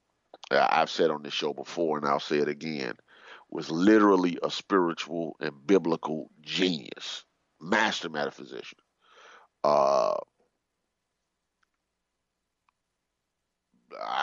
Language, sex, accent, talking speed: English, male, American, 90 wpm